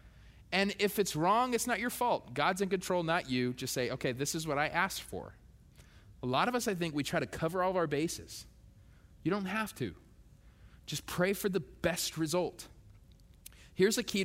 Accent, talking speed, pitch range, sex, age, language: American, 205 wpm, 110-160 Hz, male, 30-49, English